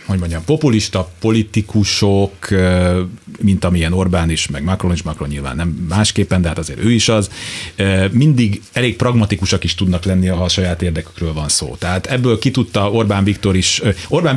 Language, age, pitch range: Hungarian, 30-49, 95-115 Hz